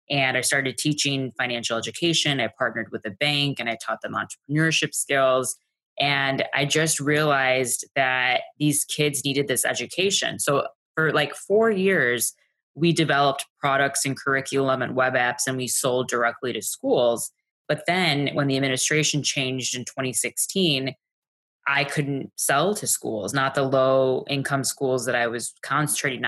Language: English